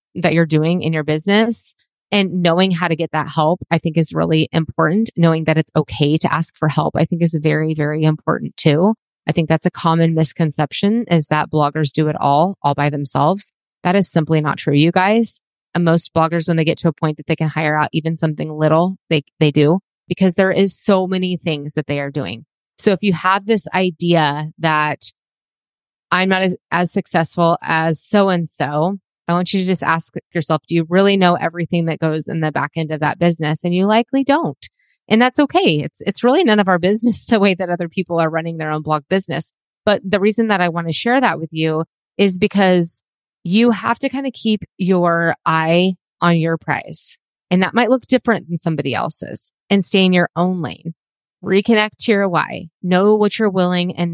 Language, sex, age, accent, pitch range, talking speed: English, female, 30-49, American, 155-190 Hz, 215 wpm